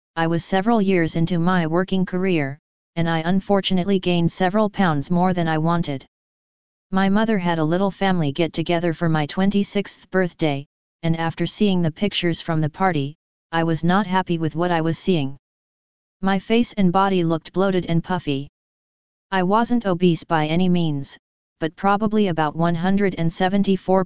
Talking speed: 160 wpm